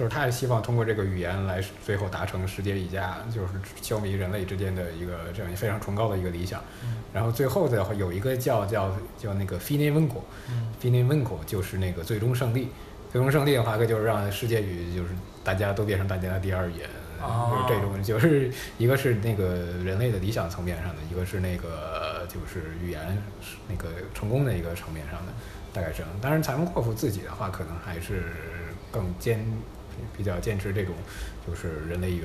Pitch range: 95-120 Hz